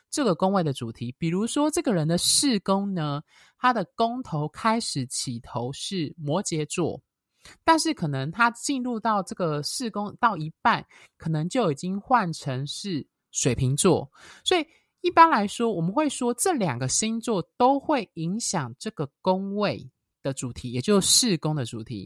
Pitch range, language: 145-230 Hz, Chinese